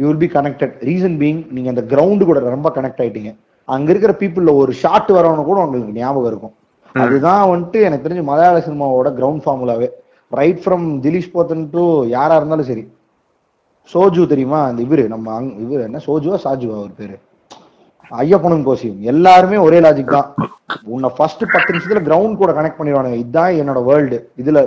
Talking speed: 45 wpm